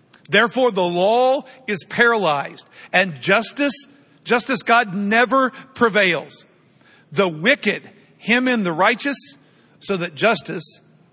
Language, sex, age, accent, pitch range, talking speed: English, male, 50-69, American, 175-240 Hz, 110 wpm